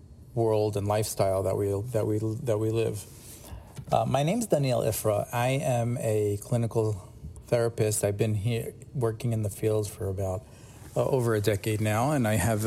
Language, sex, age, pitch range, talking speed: English, male, 40-59, 105-125 Hz, 180 wpm